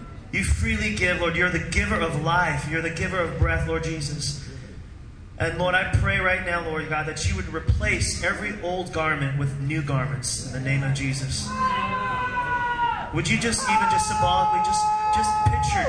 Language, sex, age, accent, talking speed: English, male, 30-49, American, 180 wpm